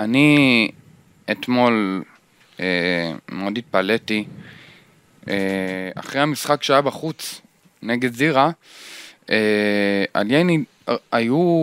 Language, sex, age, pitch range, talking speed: Hebrew, male, 20-39, 115-175 Hz, 85 wpm